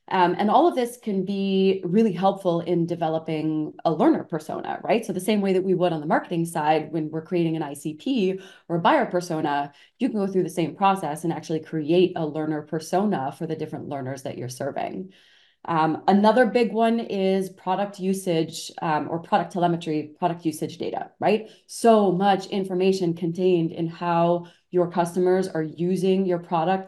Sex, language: female, English